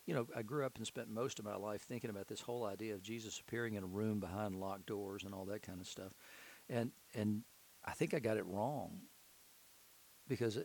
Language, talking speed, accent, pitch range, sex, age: English, 225 wpm, American, 100-120 Hz, male, 50-69